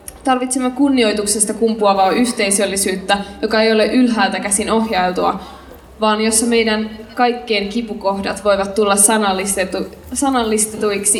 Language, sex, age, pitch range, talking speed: Finnish, female, 20-39, 200-235 Hz, 100 wpm